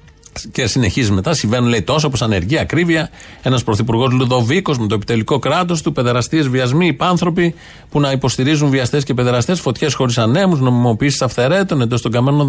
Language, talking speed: Greek, 165 wpm